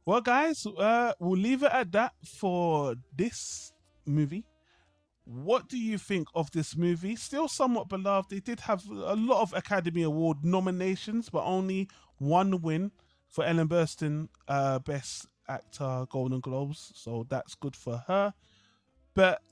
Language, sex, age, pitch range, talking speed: English, male, 20-39, 145-210 Hz, 150 wpm